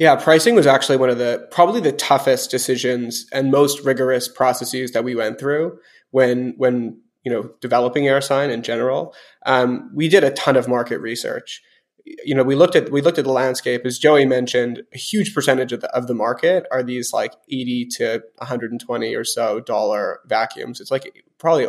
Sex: male